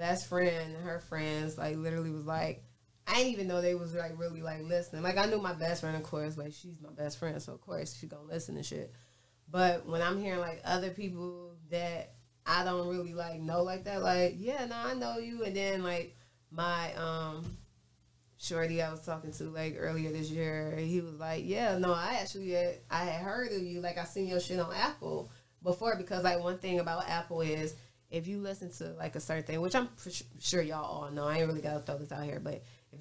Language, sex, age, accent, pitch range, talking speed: English, female, 20-39, American, 160-180 Hz, 230 wpm